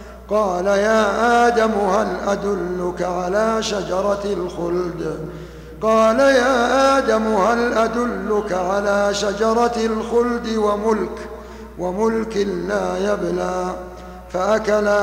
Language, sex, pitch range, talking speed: Arabic, male, 180-225 Hz, 80 wpm